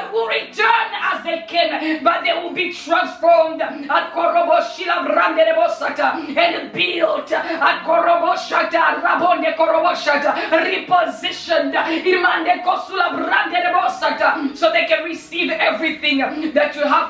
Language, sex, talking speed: English, female, 100 wpm